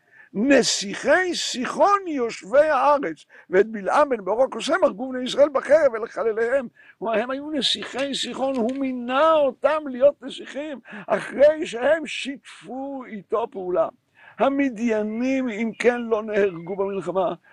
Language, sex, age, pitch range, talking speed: Hebrew, male, 60-79, 210-285 Hz, 115 wpm